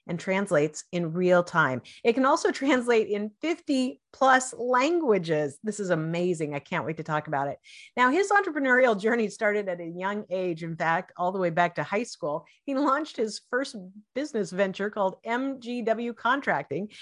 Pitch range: 180-265 Hz